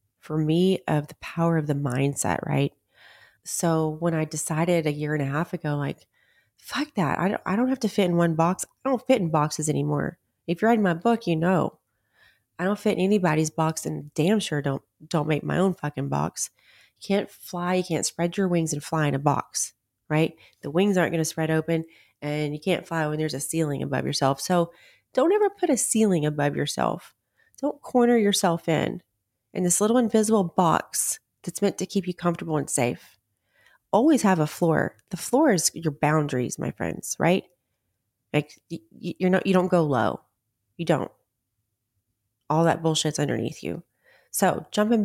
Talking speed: 190 wpm